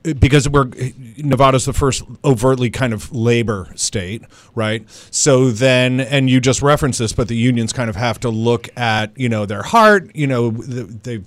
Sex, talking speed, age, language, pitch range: male, 180 wpm, 40-59, English, 115-135 Hz